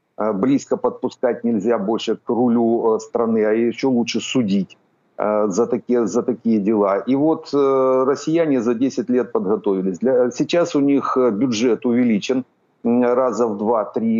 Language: Ukrainian